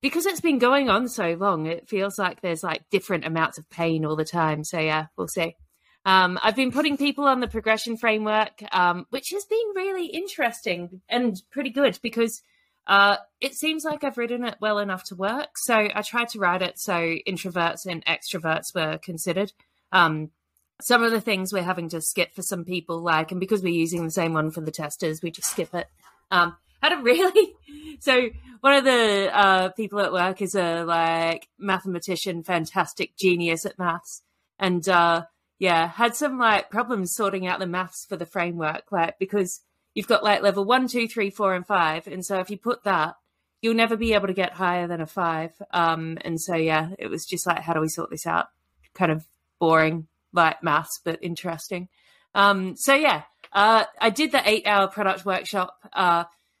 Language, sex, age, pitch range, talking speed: English, female, 30-49, 170-230 Hz, 195 wpm